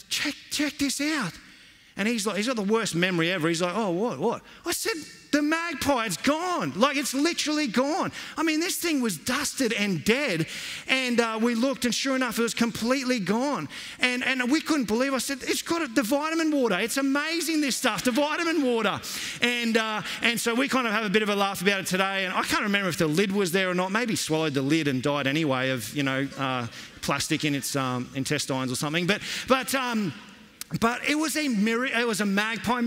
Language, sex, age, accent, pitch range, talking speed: English, male, 30-49, Australian, 175-260 Hz, 230 wpm